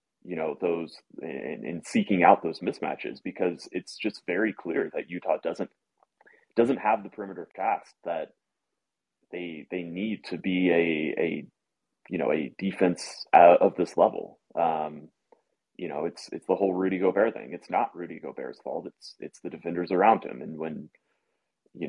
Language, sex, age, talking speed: English, male, 30-49, 165 wpm